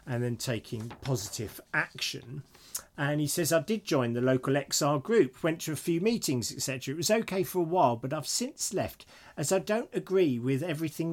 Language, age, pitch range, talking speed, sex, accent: English, 40-59, 120-155 Hz, 200 wpm, male, British